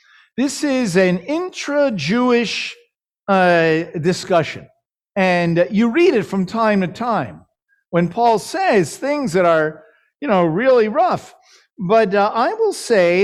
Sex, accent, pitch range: male, American, 165-240 Hz